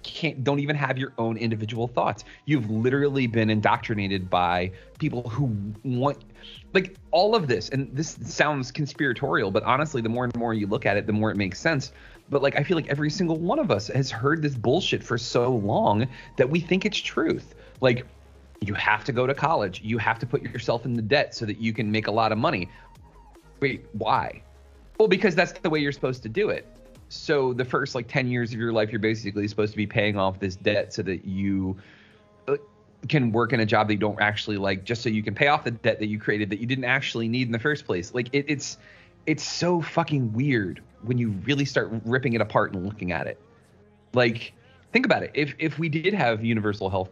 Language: English